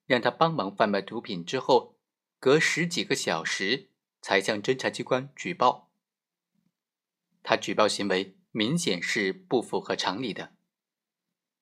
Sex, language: male, Chinese